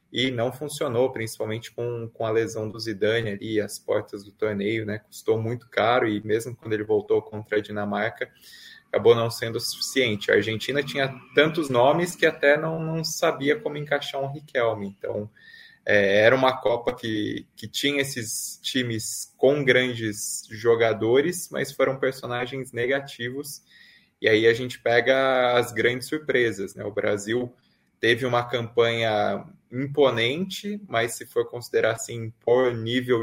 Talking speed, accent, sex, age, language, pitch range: 155 wpm, Brazilian, male, 20-39, Portuguese, 110-135 Hz